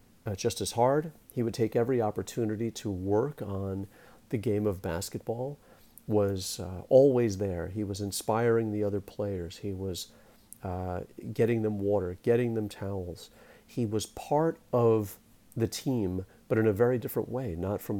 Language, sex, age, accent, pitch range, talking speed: English, male, 50-69, American, 95-115 Hz, 165 wpm